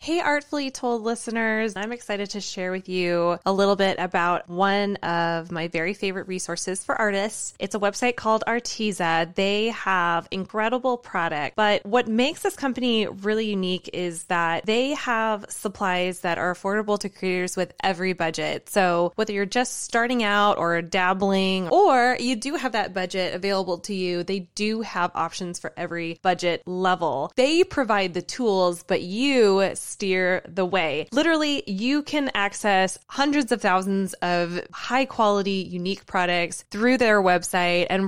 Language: English